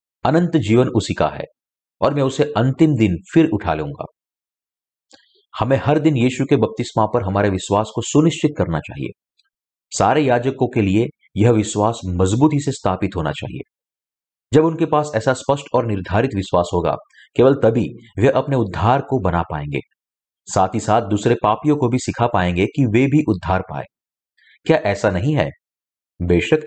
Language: Hindi